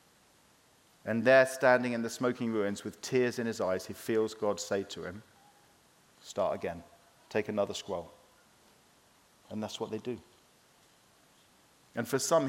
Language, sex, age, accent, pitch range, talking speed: English, male, 40-59, British, 105-130 Hz, 150 wpm